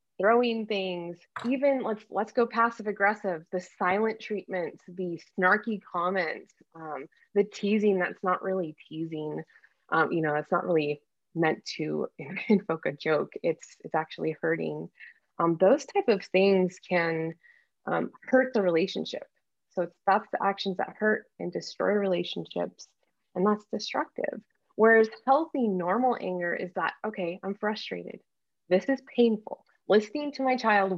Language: English